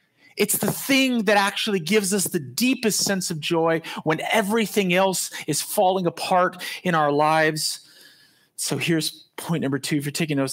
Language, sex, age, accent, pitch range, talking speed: English, male, 30-49, American, 120-175 Hz, 170 wpm